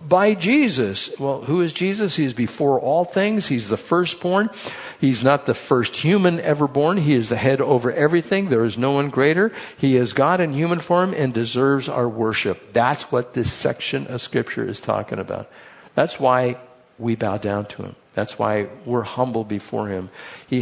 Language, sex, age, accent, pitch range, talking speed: English, male, 60-79, American, 105-140 Hz, 190 wpm